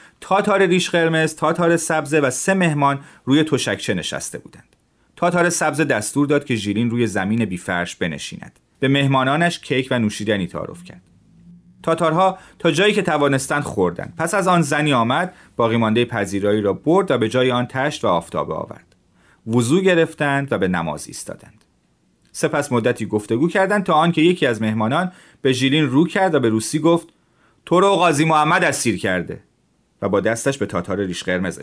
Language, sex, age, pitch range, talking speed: Persian, male, 40-59, 110-175 Hz, 165 wpm